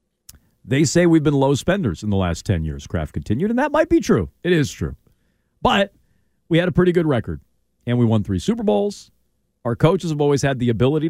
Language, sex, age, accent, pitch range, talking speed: English, male, 40-59, American, 110-160 Hz, 220 wpm